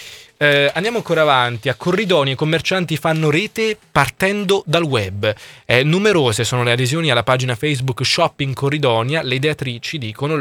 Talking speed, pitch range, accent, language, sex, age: 150 wpm, 120-160 Hz, native, Italian, male, 20-39